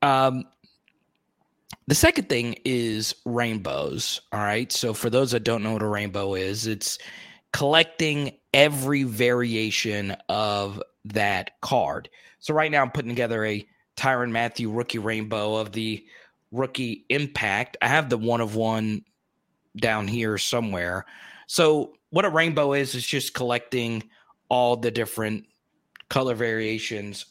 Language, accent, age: English, American, 30-49